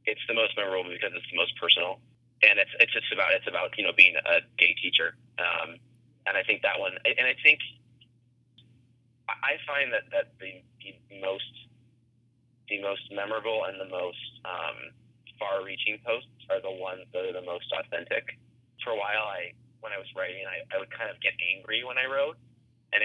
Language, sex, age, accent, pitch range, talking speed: English, male, 30-49, American, 115-135 Hz, 195 wpm